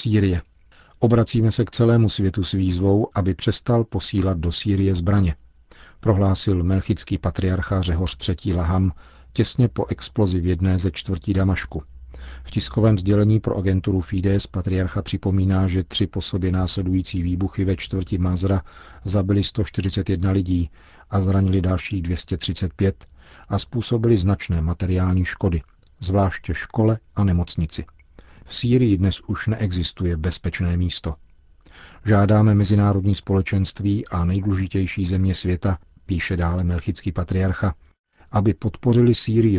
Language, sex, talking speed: Czech, male, 125 wpm